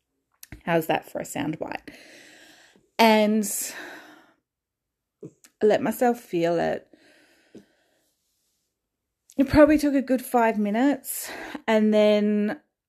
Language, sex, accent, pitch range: English, female, Australian, 185-260 Hz